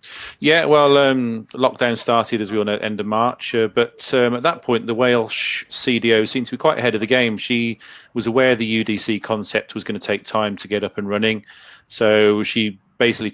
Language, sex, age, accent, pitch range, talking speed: English, male, 30-49, British, 105-120 Hz, 225 wpm